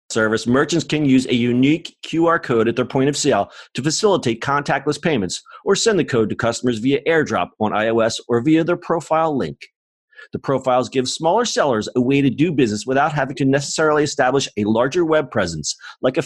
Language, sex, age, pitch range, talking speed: English, male, 40-59, 115-155 Hz, 195 wpm